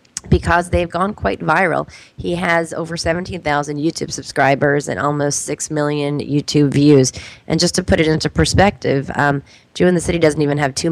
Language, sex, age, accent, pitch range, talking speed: English, female, 30-49, American, 145-165 Hz, 180 wpm